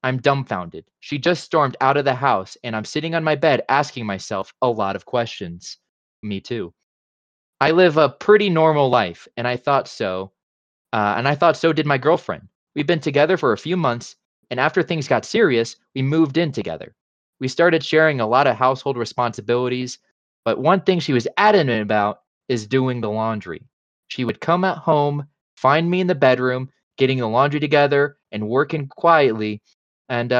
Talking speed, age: 185 wpm, 20-39